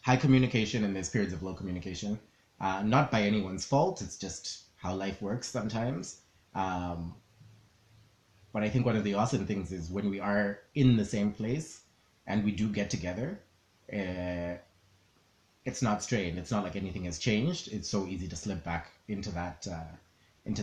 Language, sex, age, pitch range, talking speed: English, male, 30-49, 90-110 Hz, 170 wpm